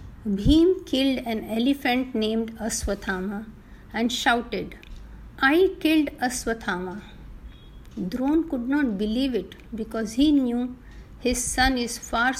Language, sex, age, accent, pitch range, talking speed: Hindi, female, 50-69, native, 205-255 Hz, 110 wpm